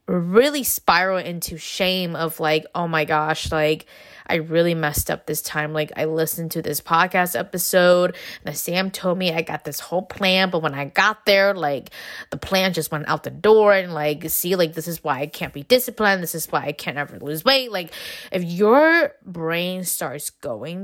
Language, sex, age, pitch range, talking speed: English, female, 20-39, 155-195 Hz, 200 wpm